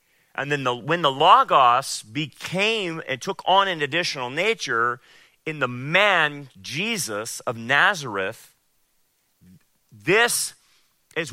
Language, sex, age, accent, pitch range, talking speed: English, male, 40-59, American, 145-205 Hz, 105 wpm